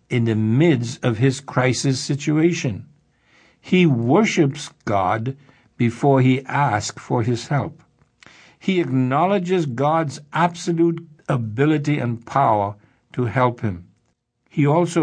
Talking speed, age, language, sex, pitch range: 110 wpm, 60-79, English, male, 120-155 Hz